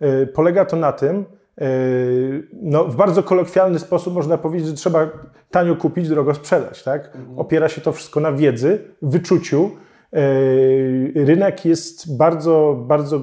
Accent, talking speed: native, 130 wpm